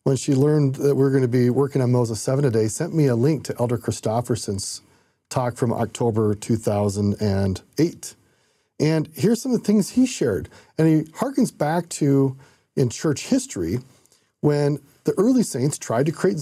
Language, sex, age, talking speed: English, male, 40-59, 170 wpm